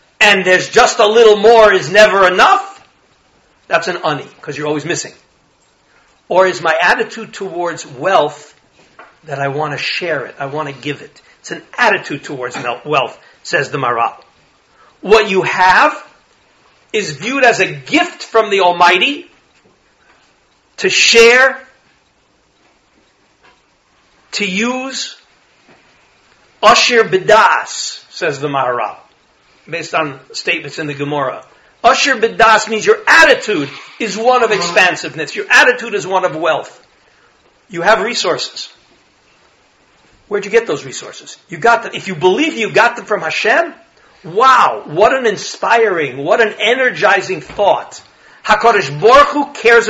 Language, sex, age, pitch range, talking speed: English, male, 50-69, 190-265 Hz, 135 wpm